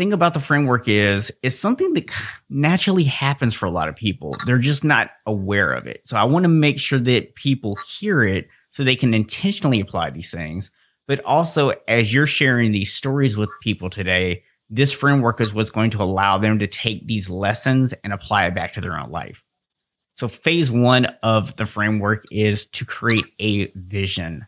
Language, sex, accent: English, male, American